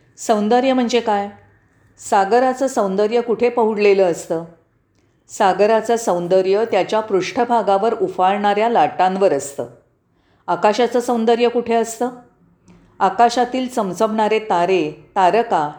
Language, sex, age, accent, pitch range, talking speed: Marathi, female, 40-59, native, 175-235 Hz, 85 wpm